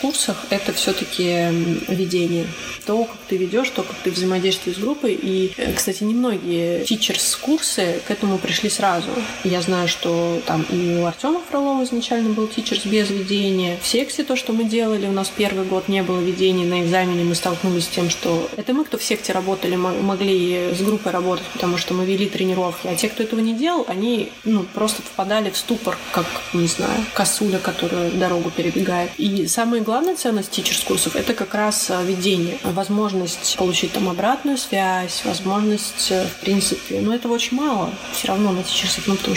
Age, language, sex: 20-39, Russian, female